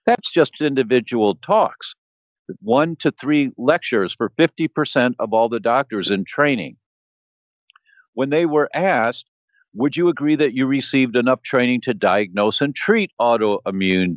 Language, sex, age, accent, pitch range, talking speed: English, male, 50-69, American, 110-150 Hz, 140 wpm